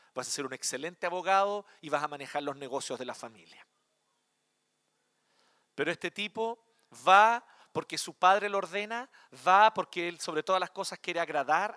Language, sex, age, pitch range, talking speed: Spanish, male, 40-59, 155-205 Hz, 170 wpm